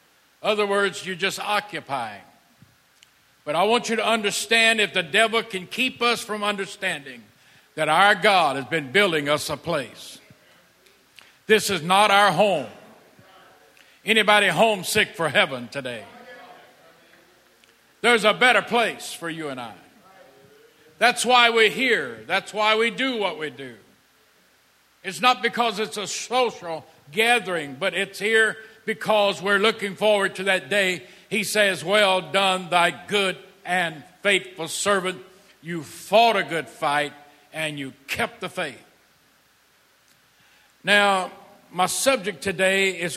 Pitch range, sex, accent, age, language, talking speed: 160-210 Hz, male, American, 50-69, English, 140 wpm